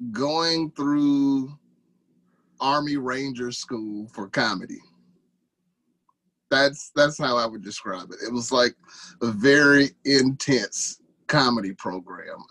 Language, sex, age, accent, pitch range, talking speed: English, male, 30-49, American, 120-145 Hz, 105 wpm